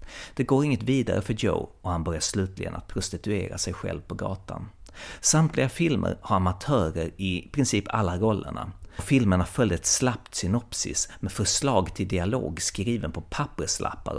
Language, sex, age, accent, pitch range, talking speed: Swedish, male, 30-49, native, 90-110 Hz, 150 wpm